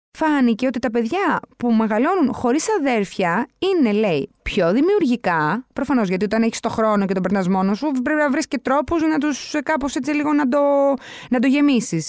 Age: 20-39